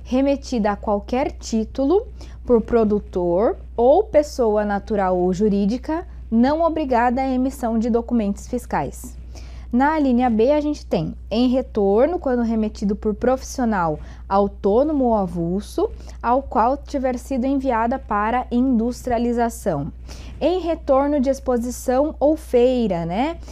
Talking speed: 120 wpm